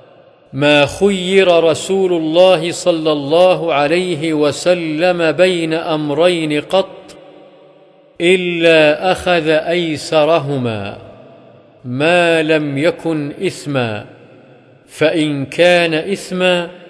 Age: 50-69